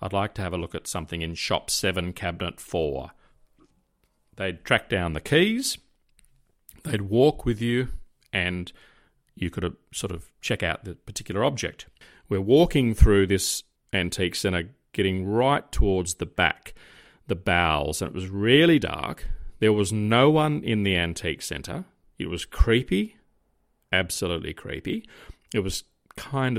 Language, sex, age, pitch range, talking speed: English, male, 40-59, 90-120 Hz, 150 wpm